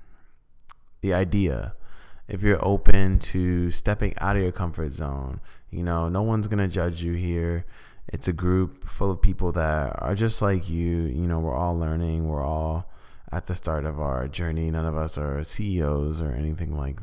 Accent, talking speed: American, 185 wpm